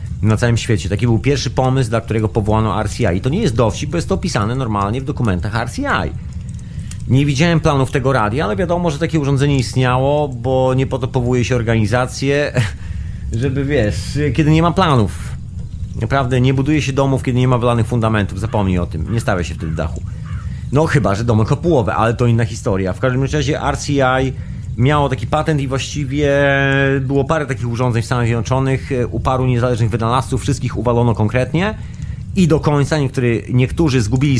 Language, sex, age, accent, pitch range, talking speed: Polish, male, 30-49, native, 110-135 Hz, 185 wpm